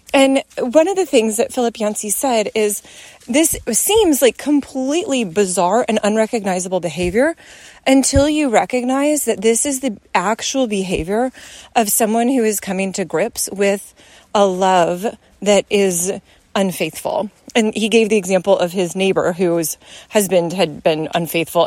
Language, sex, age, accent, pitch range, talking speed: English, female, 30-49, American, 205-280 Hz, 145 wpm